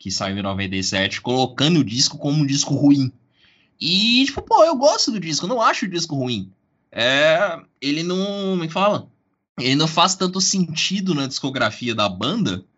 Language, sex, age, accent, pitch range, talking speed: Portuguese, male, 20-39, Brazilian, 105-165 Hz, 175 wpm